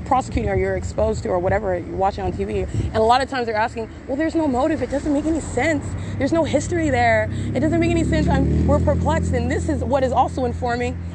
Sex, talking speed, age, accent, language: female, 250 wpm, 30-49, American, English